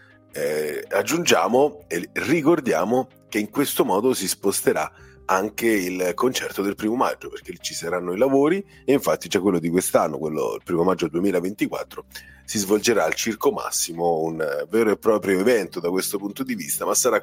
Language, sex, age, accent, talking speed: Italian, male, 40-59, native, 170 wpm